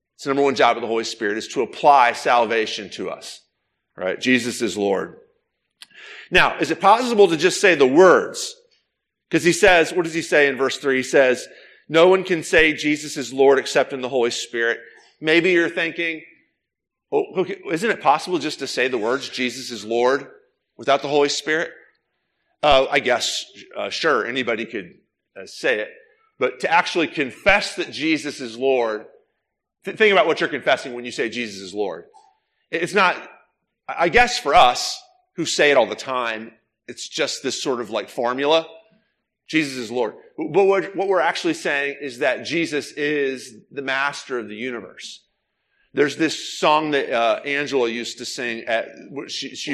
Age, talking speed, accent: 40-59, 175 wpm, American